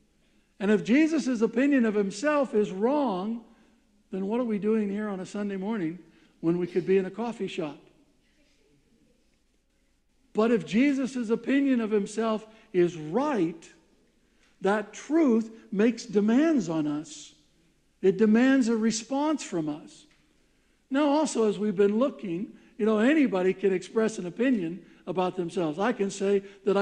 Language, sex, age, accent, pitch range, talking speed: English, male, 60-79, American, 190-245 Hz, 145 wpm